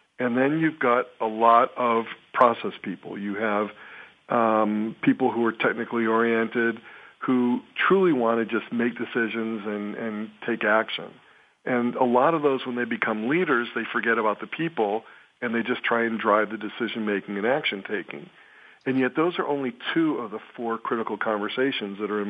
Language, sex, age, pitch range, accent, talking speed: English, male, 50-69, 110-125 Hz, American, 185 wpm